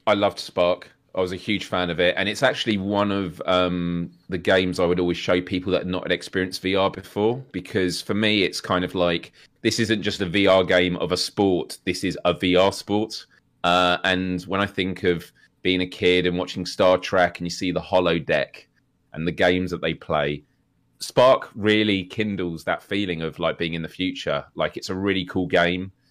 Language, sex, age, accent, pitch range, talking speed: English, male, 30-49, British, 85-95 Hz, 210 wpm